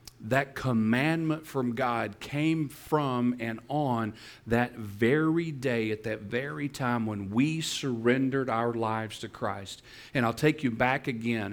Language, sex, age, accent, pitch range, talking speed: English, male, 40-59, American, 115-140 Hz, 145 wpm